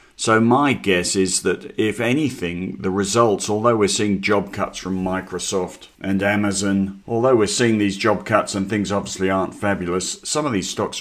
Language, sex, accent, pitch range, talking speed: English, male, British, 90-105 Hz, 180 wpm